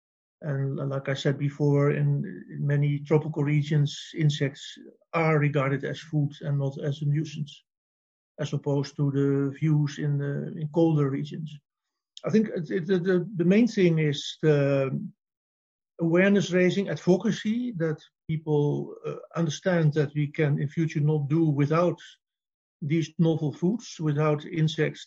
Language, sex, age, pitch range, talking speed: English, male, 50-69, 145-165 Hz, 130 wpm